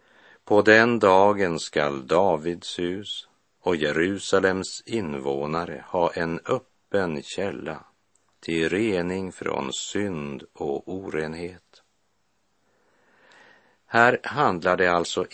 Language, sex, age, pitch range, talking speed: Swedish, male, 50-69, 80-100 Hz, 90 wpm